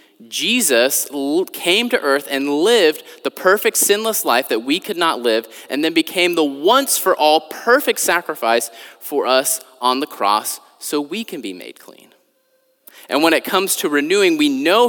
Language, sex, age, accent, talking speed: English, male, 20-39, American, 175 wpm